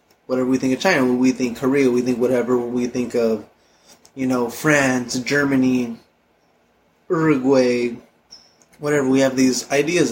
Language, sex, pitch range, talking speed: English, male, 125-145 Hz, 140 wpm